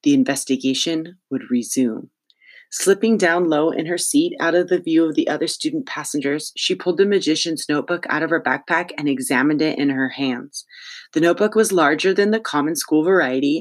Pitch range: 150-230 Hz